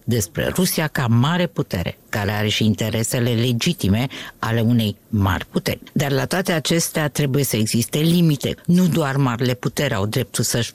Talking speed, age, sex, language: 160 wpm, 50-69, female, Romanian